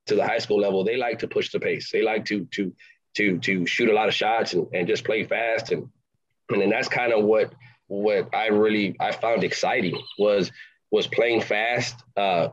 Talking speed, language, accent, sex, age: 215 wpm, English, American, male, 20-39